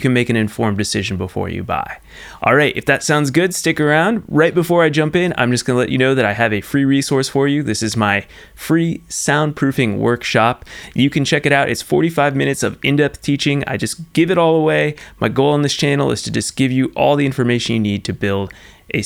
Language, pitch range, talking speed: English, 110-145 Hz, 235 wpm